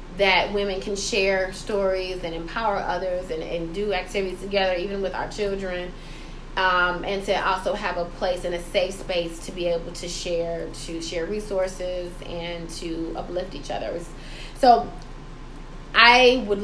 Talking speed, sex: 160 wpm, female